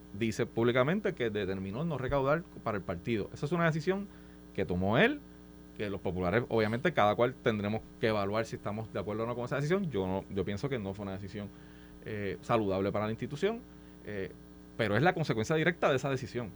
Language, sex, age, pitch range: Spanish, male, 30-49, 100-160 Hz